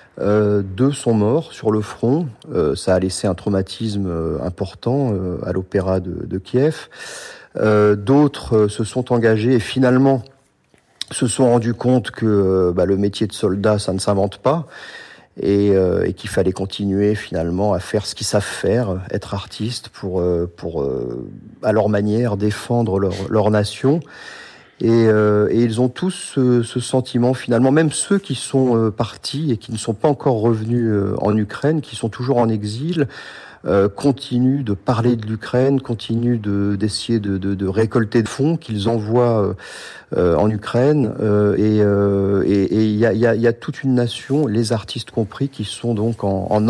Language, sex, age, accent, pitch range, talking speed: French, male, 40-59, French, 100-125 Hz, 180 wpm